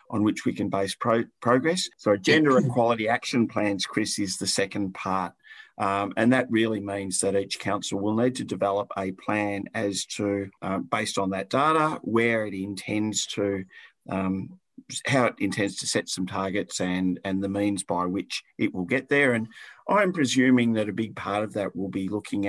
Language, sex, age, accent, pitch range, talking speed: English, male, 50-69, Australian, 100-115 Hz, 190 wpm